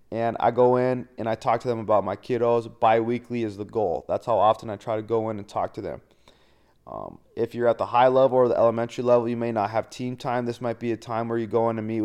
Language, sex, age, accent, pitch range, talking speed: English, male, 30-49, American, 110-125 Hz, 280 wpm